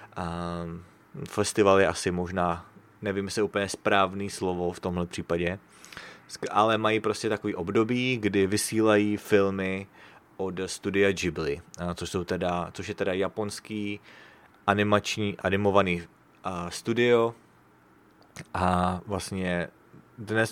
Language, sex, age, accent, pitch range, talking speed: English, male, 20-39, Czech, 90-105 Hz, 110 wpm